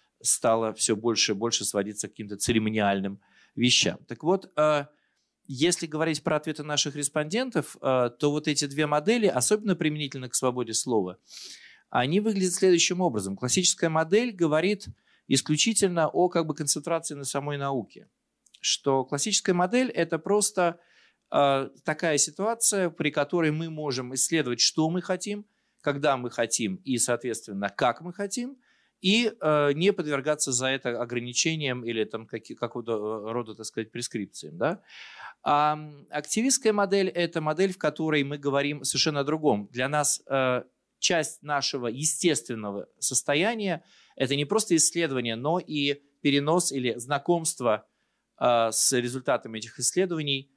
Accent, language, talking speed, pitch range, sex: native, Russian, 130 wpm, 125-170 Hz, male